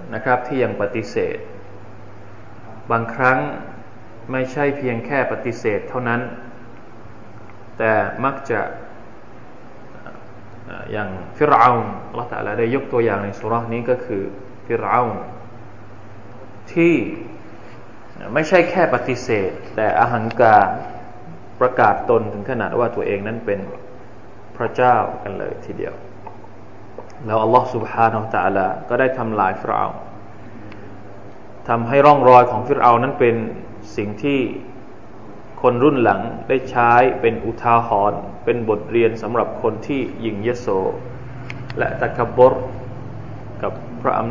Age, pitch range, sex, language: 20-39, 105-125 Hz, male, Thai